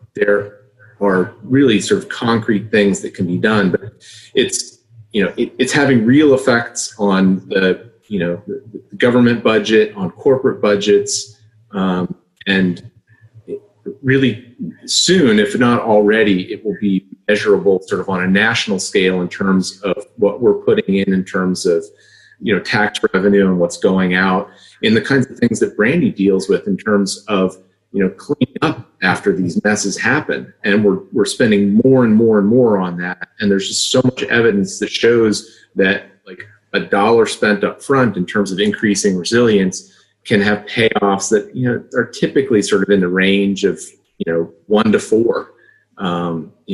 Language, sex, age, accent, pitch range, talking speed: English, male, 30-49, American, 95-120 Hz, 180 wpm